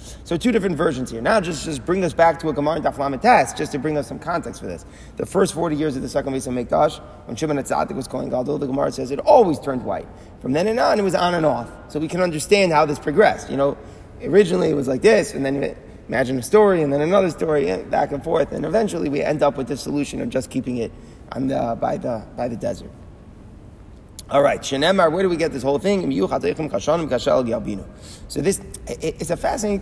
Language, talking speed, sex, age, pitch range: English, 240 wpm, male, 30-49, 135-170 Hz